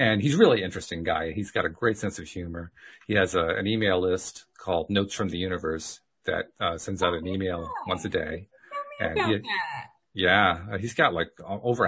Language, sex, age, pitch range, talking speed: English, male, 40-59, 95-140 Hz, 205 wpm